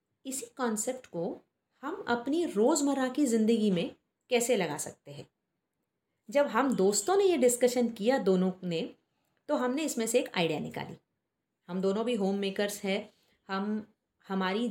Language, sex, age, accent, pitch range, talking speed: Hindi, female, 30-49, native, 185-260 Hz, 150 wpm